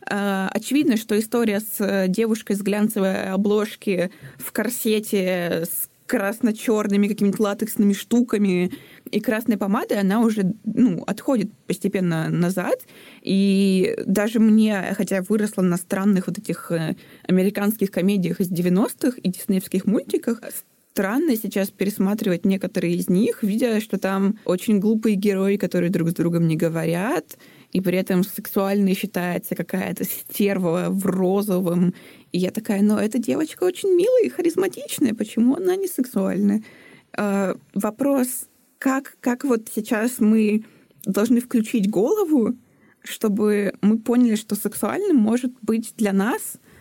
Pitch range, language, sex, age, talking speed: 190-230 Hz, Russian, female, 20-39, 130 wpm